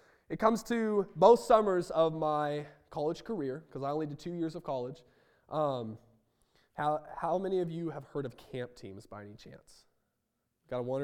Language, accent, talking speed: English, American, 185 wpm